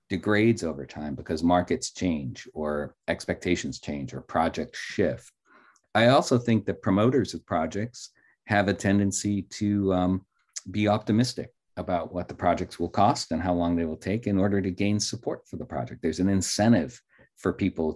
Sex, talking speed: male, 170 wpm